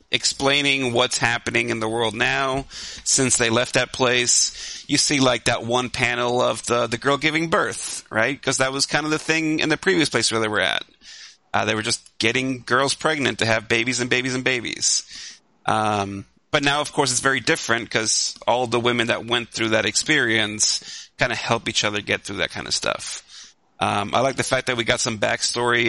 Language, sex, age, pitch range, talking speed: English, male, 30-49, 110-130 Hz, 215 wpm